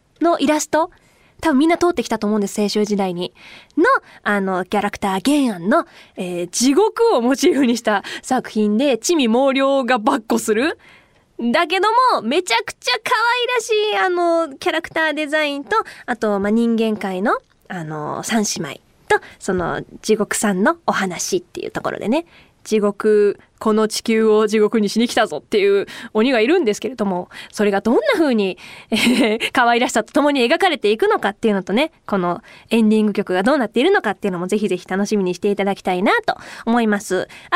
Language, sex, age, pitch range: Japanese, female, 20-39, 215-350 Hz